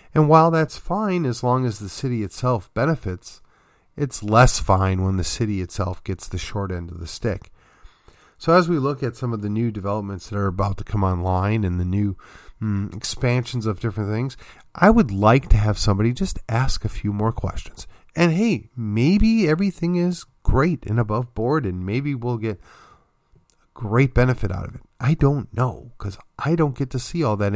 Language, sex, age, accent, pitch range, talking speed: English, male, 40-59, American, 100-145 Hz, 195 wpm